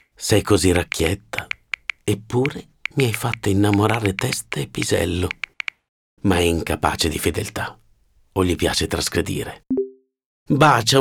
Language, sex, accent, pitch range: Italian, male, native, 95-130 Hz